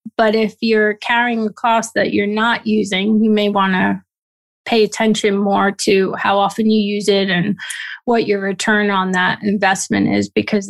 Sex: female